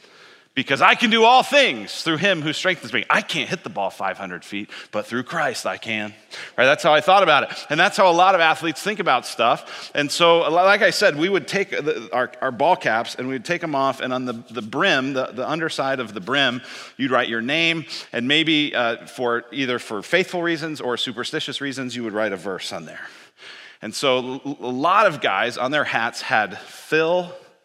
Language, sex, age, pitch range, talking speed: English, male, 40-59, 120-160 Hz, 210 wpm